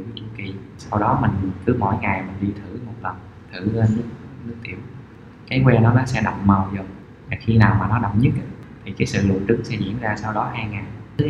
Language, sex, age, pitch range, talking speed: Vietnamese, male, 20-39, 100-115 Hz, 230 wpm